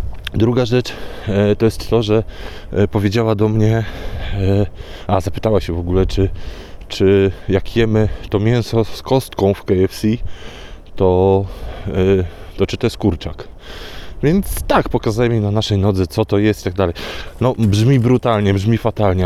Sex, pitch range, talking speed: male, 95-110 Hz, 150 wpm